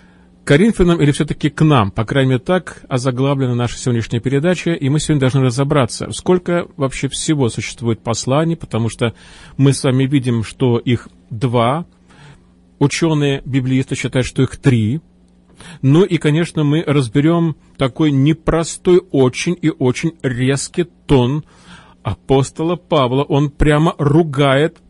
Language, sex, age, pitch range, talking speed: Russian, male, 40-59, 130-165 Hz, 130 wpm